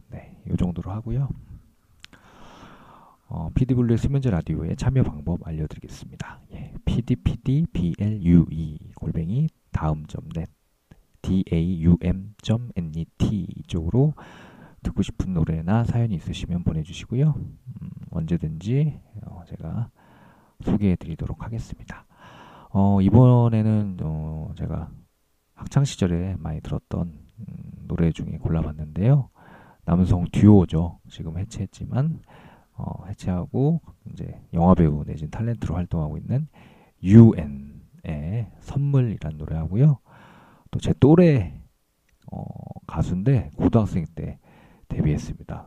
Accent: native